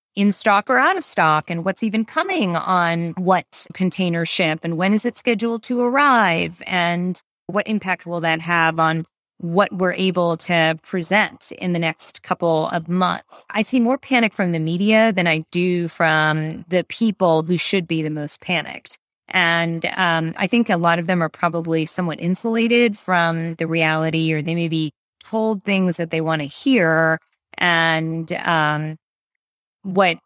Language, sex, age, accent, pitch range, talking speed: English, female, 30-49, American, 165-195 Hz, 175 wpm